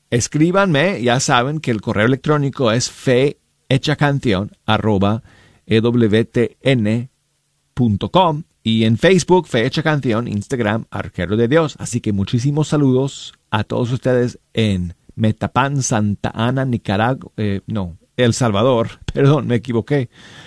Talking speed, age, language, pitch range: 105 wpm, 40-59, Spanish, 115-150 Hz